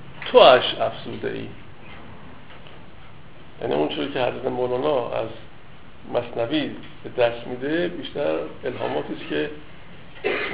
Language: Persian